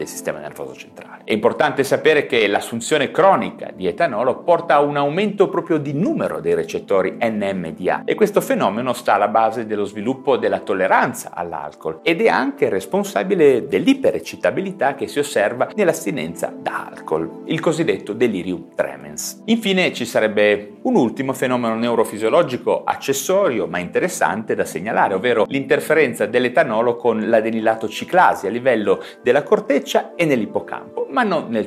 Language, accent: Italian, native